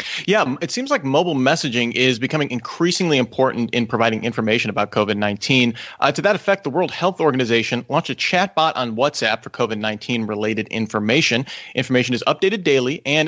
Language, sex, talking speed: English, male, 165 wpm